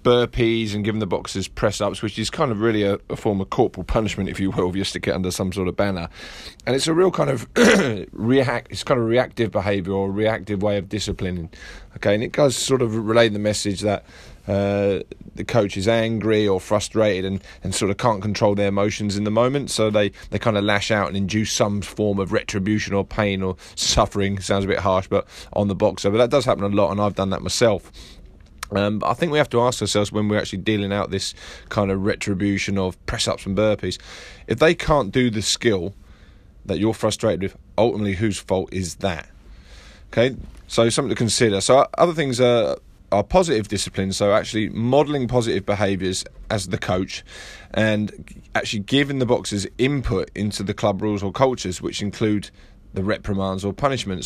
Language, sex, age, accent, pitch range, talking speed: English, male, 20-39, British, 95-115 Hz, 205 wpm